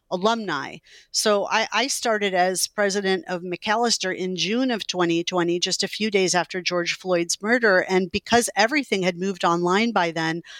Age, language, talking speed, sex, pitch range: 50-69, English, 165 wpm, female, 180-215 Hz